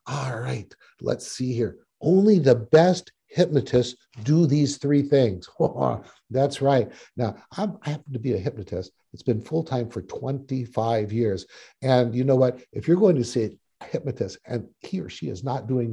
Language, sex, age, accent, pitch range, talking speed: English, male, 60-79, American, 115-155 Hz, 180 wpm